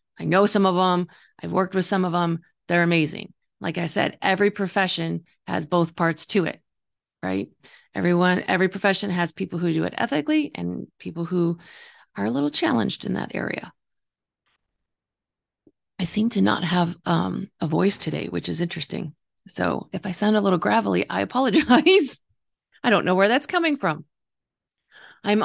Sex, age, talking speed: female, 30-49, 170 wpm